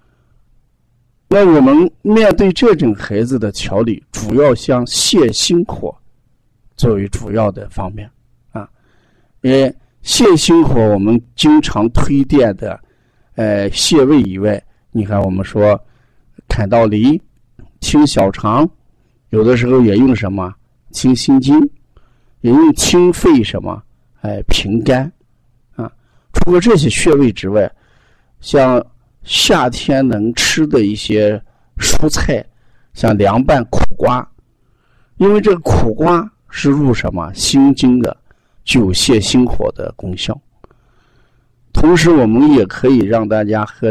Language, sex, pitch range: Chinese, male, 105-135 Hz